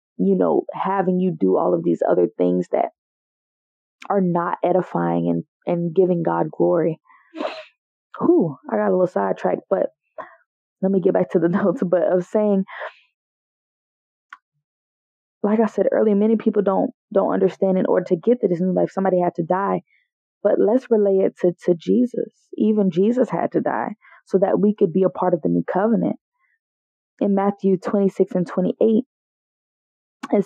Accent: American